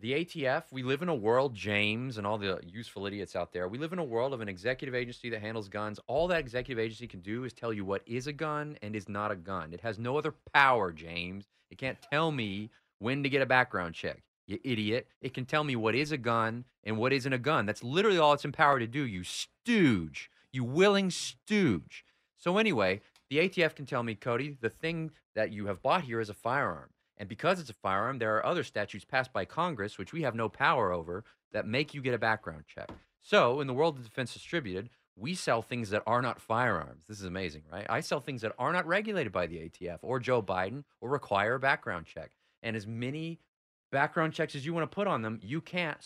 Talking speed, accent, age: 235 wpm, American, 30-49